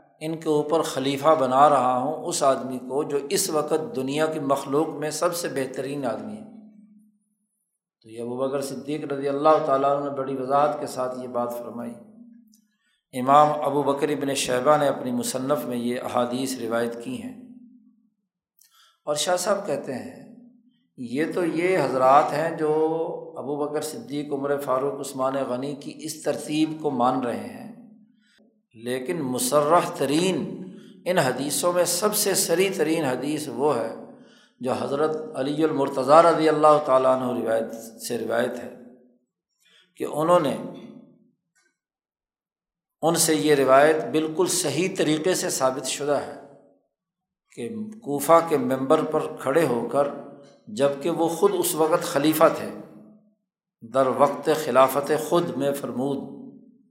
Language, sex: Urdu, male